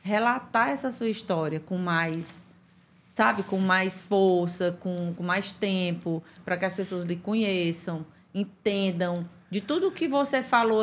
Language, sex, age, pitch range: Portuguese, female, 20-39, 180-215 Hz